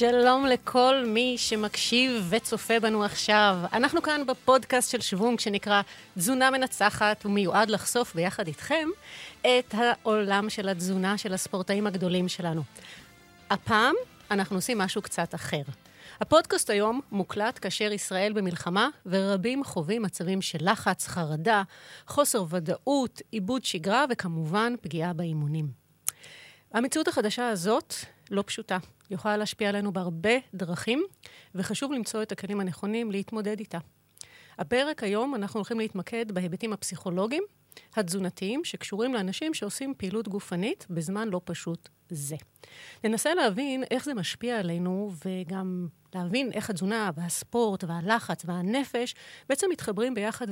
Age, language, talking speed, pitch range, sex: 30-49, Hebrew, 120 wpm, 185-240 Hz, female